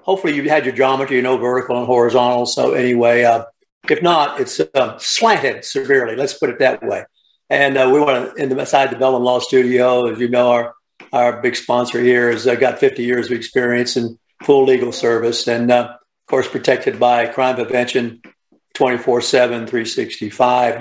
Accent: American